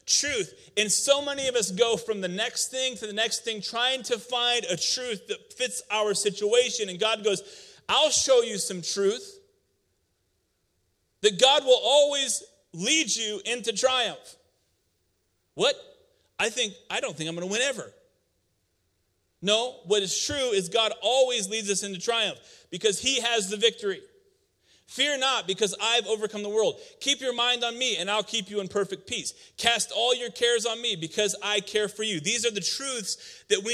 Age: 40-59